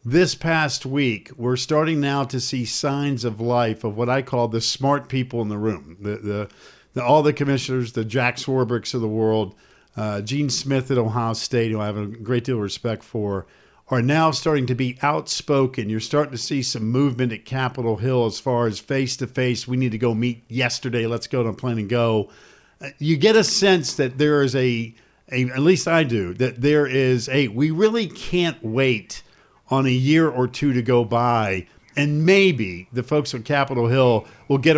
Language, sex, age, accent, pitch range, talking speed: English, male, 50-69, American, 120-150 Hz, 205 wpm